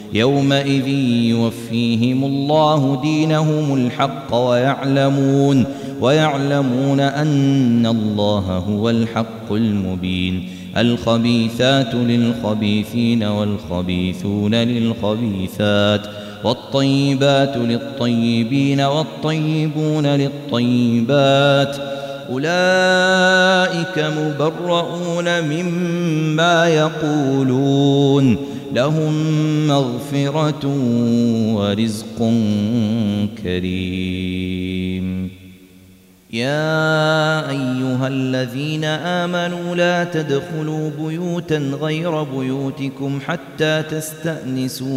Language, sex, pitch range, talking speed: Arabic, male, 115-150 Hz, 50 wpm